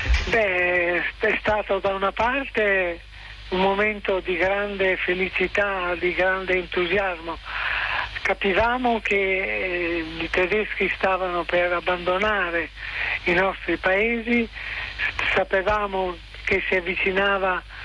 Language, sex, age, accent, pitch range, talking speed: Italian, male, 60-79, native, 180-205 Hz, 95 wpm